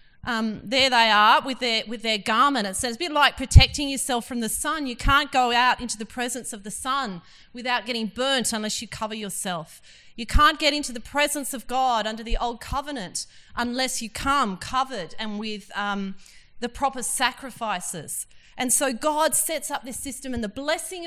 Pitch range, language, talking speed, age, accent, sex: 220-270 Hz, English, 190 wpm, 30-49, Australian, female